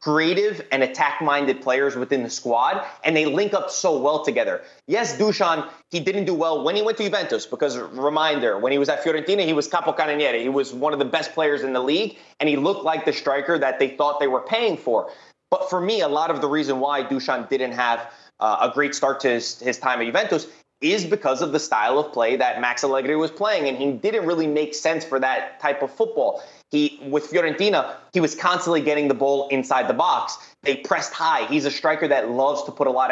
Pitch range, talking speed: 135-165 Hz, 230 wpm